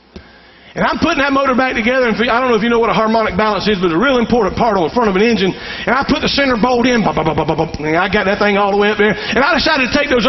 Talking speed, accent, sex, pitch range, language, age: 345 wpm, American, male, 230-330 Hz, English, 50-69